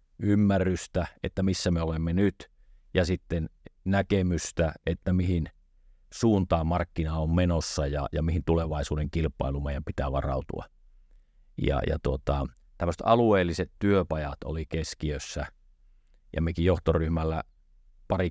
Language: Finnish